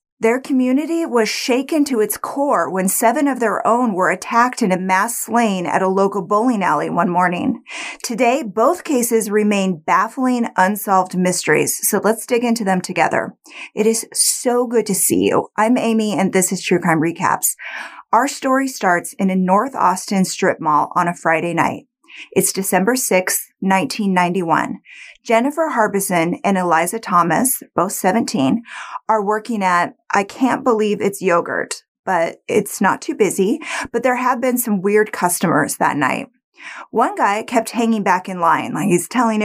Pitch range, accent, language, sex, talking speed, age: 185-250 Hz, American, English, female, 165 wpm, 30-49